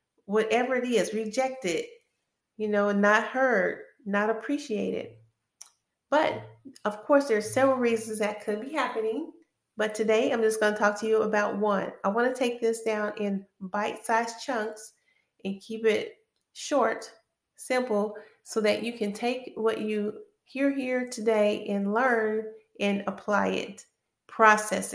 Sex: female